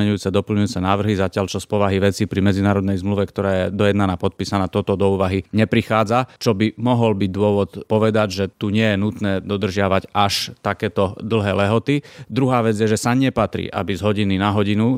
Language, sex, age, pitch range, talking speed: Slovak, male, 30-49, 100-115 Hz, 185 wpm